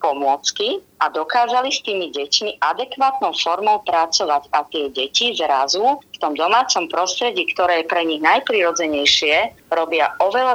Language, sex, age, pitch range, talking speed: Slovak, female, 30-49, 155-210 Hz, 130 wpm